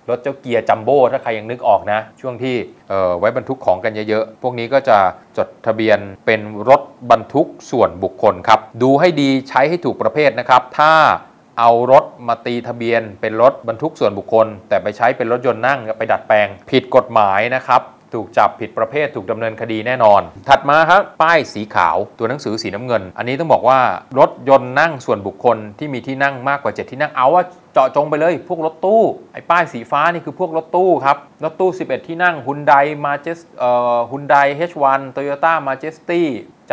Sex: male